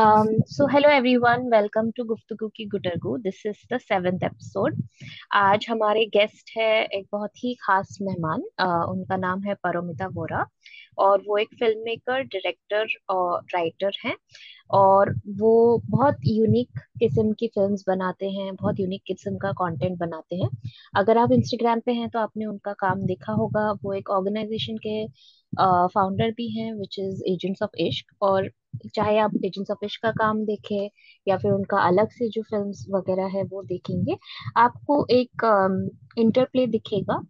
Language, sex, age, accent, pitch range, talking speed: English, female, 20-39, Indian, 185-220 Hz, 155 wpm